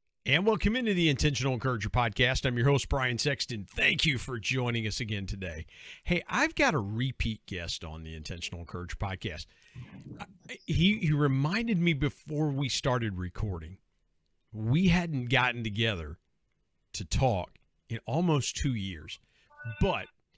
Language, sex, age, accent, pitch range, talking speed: English, male, 50-69, American, 105-150 Hz, 145 wpm